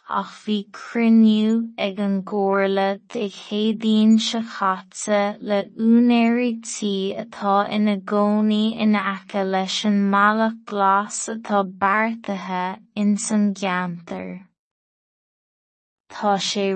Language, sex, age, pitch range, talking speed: English, female, 20-39, 195-225 Hz, 85 wpm